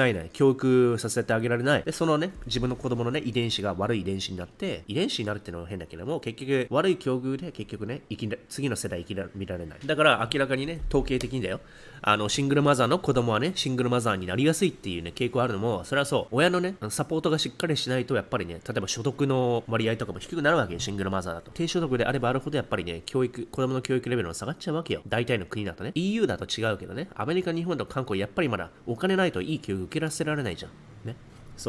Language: Japanese